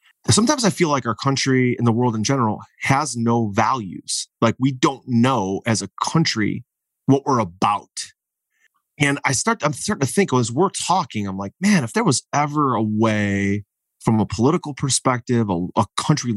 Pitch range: 110-140 Hz